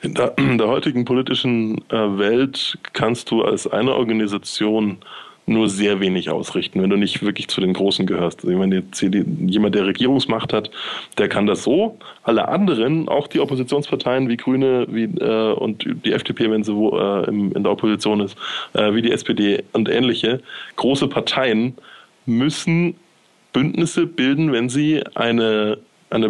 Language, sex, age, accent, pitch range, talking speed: German, male, 20-39, German, 110-135 Hz, 165 wpm